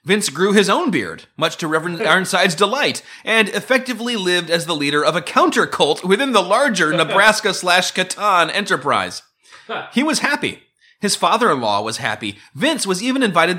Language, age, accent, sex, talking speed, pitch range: English, 30-49, American, male, 175 wpm, 145-200 Hz